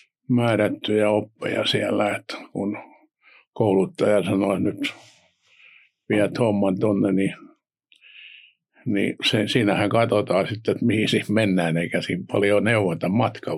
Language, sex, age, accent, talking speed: Finnish, male, 60-79, native, 110 wpm